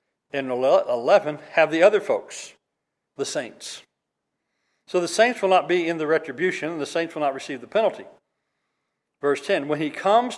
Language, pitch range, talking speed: English, 150-195 Hz, 175 wpm